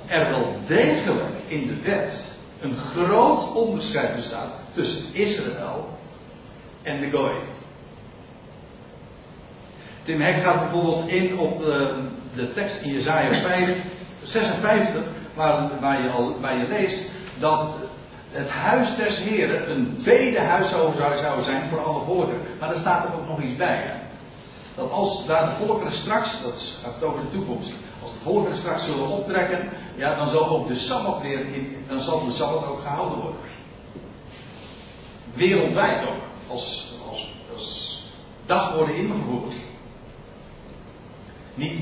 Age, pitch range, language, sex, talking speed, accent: 50-69, 140-200 Hz, Dutch, male, 140 wpm, Dutch